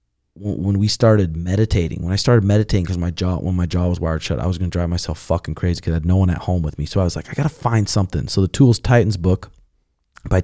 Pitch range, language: 90-110 Hz, English